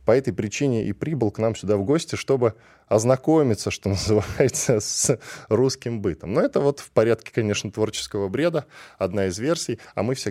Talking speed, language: 180 wpm, Russian